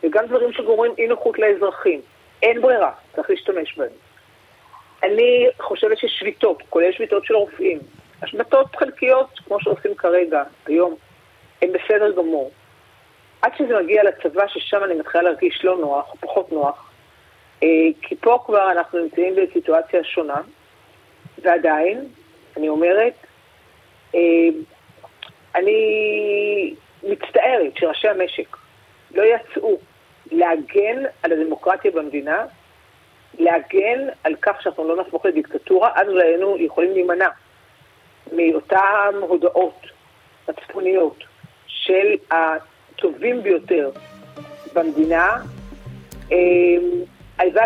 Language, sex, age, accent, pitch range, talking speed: Hebrew, female, 40-59, native, 165-235 Hz, 100 wpm